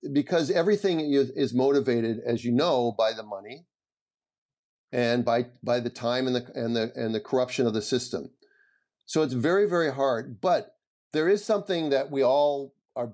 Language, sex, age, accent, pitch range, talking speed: English, male, 50-69, American, 120-160 Hz, 175 wpm